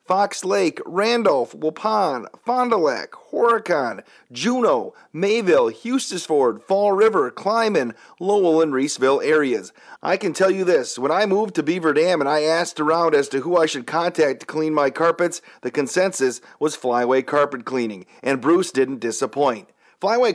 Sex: male